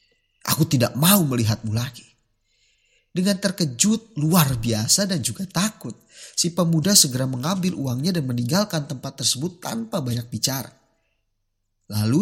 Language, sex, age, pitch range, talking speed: Indonesian, male, 30-49, 115-170 Hz, 125 wpm